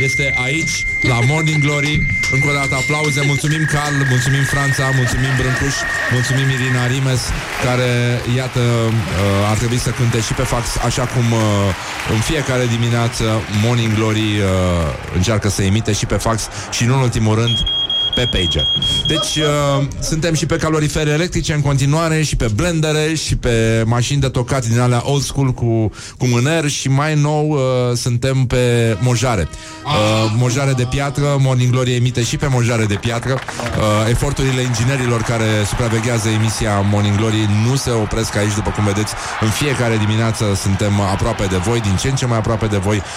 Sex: male